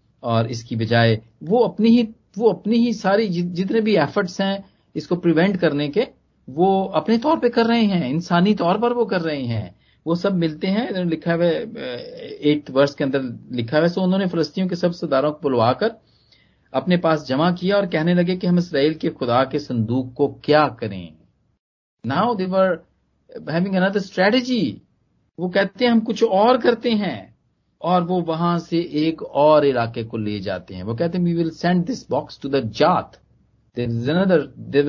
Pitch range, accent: 145-195 Hz, native